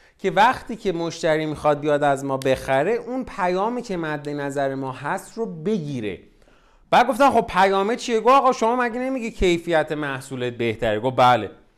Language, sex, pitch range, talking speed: Persian, male, 135-225 Hz, 170 wpm